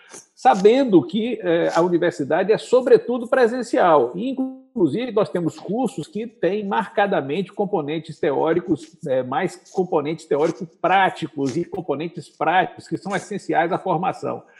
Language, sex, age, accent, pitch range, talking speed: Portuguese, male, 60-79, Brazilian, 160-225 Hz, 115 wpm